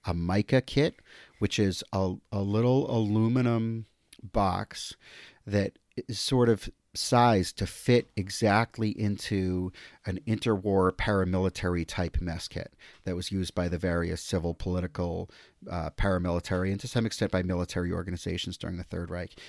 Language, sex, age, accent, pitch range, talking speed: English, male, 40-59, American, 95-115 Hz, 140 wpm